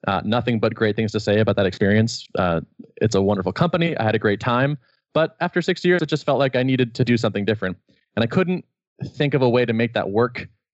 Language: English